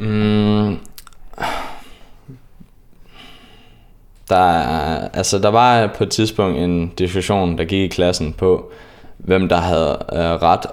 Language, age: Danish, 20-39